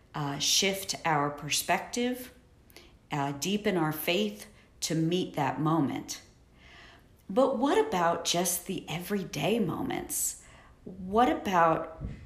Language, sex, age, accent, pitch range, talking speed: English, female, 40-59, American, 155-190 Hz, 105 wpm